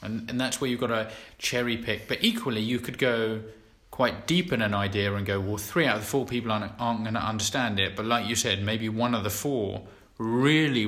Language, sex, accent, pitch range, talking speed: English, male, British, 100-125 Hz, 245 wpm